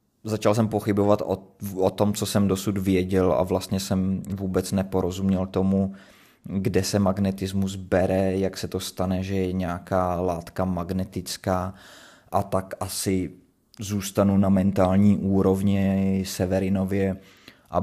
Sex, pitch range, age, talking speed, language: male, 95-100 Hz, 20-39, 130 wpm, Czech